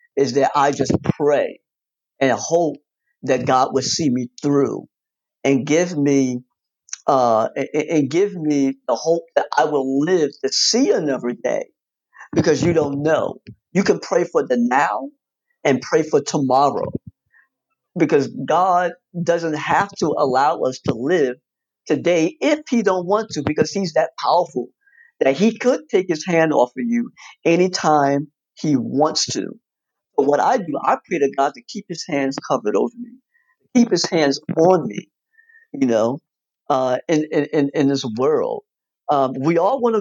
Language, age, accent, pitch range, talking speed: English, 50-69, American, 145-215 Hz, 160 wpm